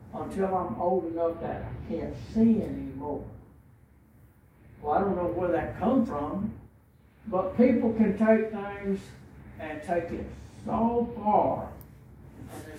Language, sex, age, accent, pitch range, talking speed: English, male, 60-79, American, 170-220 Hz, 135 wpm